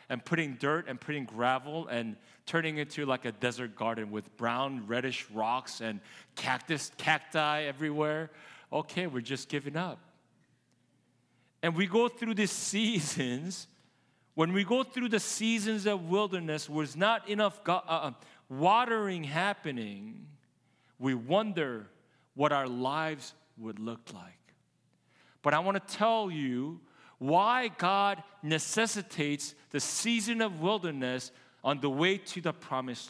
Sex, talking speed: male, 135 wpm